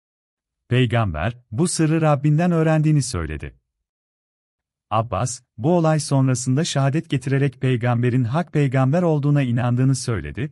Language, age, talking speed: Turkish, 40-59, 105 wpm